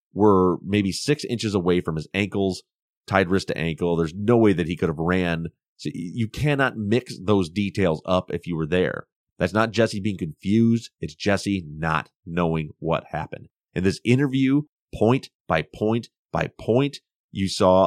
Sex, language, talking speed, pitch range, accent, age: male, English, 170 wpm, 90-115 Hz, American, 30-49